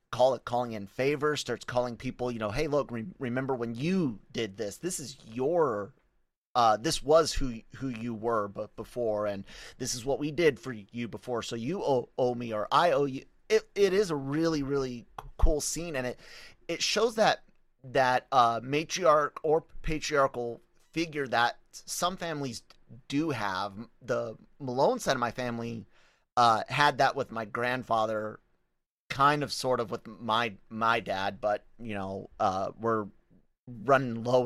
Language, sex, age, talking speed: English, male, 30-49, 170 wpm